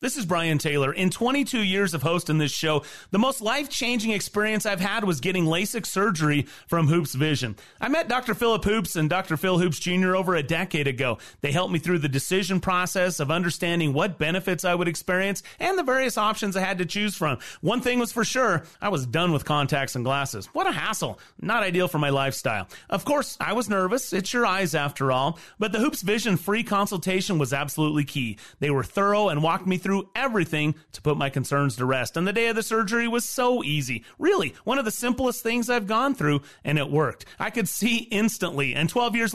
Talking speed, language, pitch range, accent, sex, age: 220 wpm, English, 150-220 Hz, American, male, 30-49